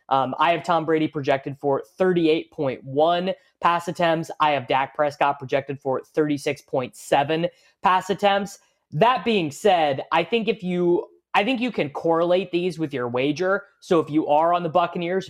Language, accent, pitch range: English, American, 135-170 Hz